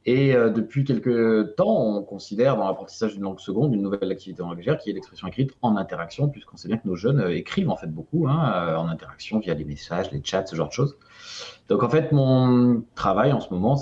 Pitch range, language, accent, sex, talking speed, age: 100-140 Hz, French, French, male, 220 wpm, 30-49